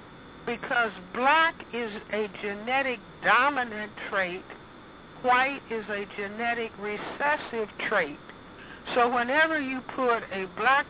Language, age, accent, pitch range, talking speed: English, 60-79, American, 210-250 Hz, 105 wpm